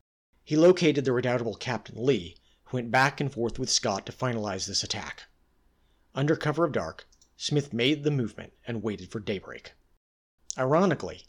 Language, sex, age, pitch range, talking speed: English, male, 40-59, 100-140 Hz, 160 wpm